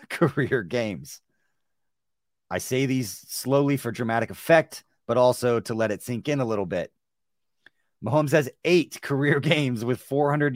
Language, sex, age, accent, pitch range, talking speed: English, male, 30-49, American, 105-140 Hz, 150 wpm